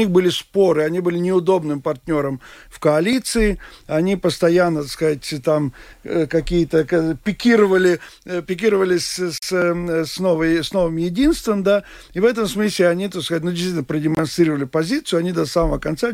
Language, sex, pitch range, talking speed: Russian, male, 155-195 Hz, 140 wpm